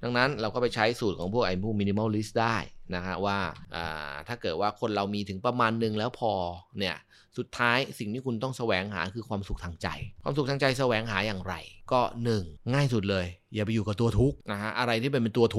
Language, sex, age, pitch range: Thai, male, 20-39, 95-120 Hz